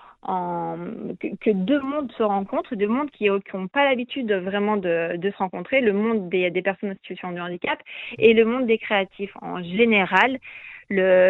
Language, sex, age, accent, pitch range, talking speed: French, female, 30-49, French, 190-235 Hz, 190 wpm